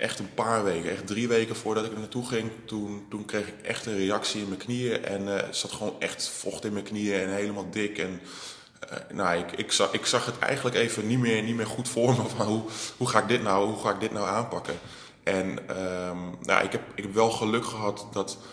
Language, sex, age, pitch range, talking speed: Dutch, male, 20-39, 95-110 Hz, 240 wpm